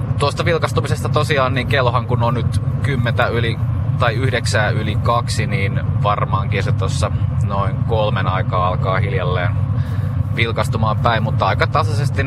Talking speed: 120 wpm